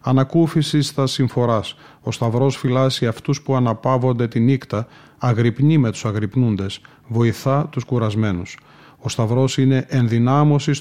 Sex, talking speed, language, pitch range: male, 120 wpm, Greek, 120-140 Hz